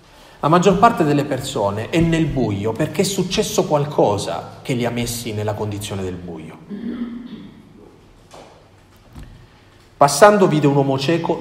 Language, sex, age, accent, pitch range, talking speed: Italian, male, 40-59, native, 115-170 Hz, 130 wpm